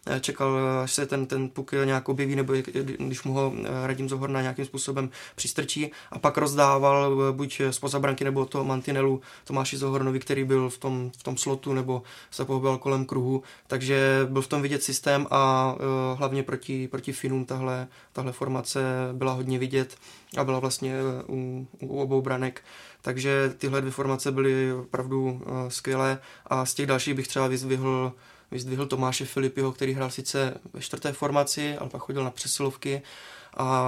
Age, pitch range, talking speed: 20-39, 130-135 Hz, 165 wpm